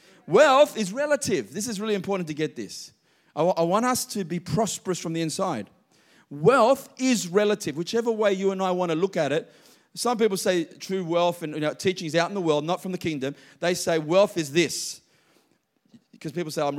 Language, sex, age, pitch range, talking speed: English, male, 30-49, 160-215 Hz, 215 wpm